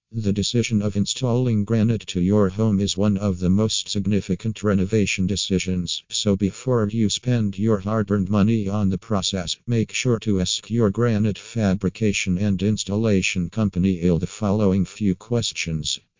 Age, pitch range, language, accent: 50-69, 95-110 Hz, English, American